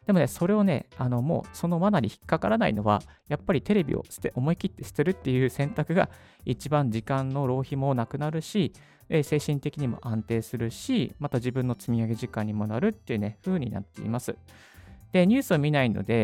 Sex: male